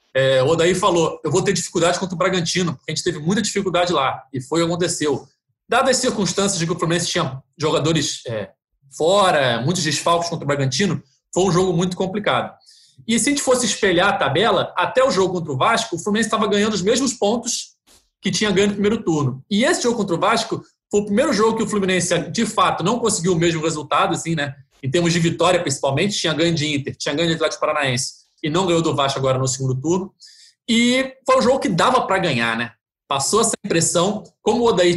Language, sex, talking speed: Portuguese, male, 220 wpm